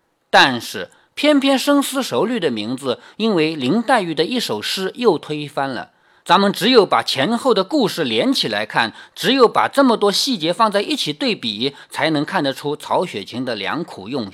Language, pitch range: Chinese, 160-255 Hz